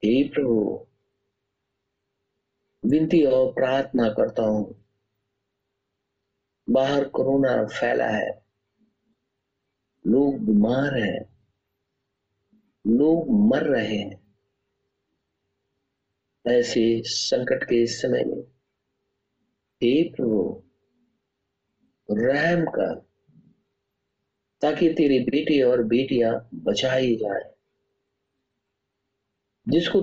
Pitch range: 115-155 Hz